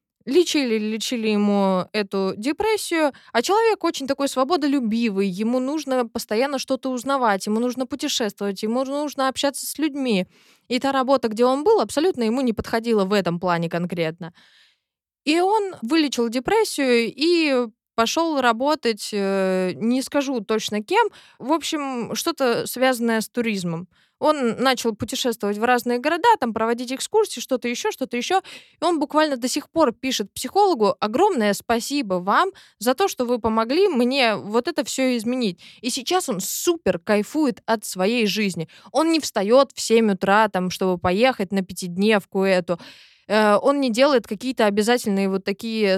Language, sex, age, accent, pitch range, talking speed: Russian, female, 20-39, native, 205-275 Hz, 145 wpm